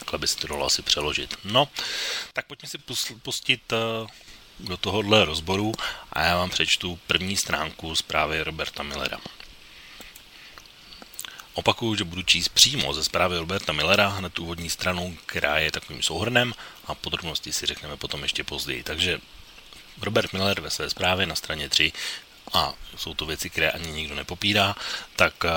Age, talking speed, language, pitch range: 30-49, 155 wpm, Slovak, 80-100 Hz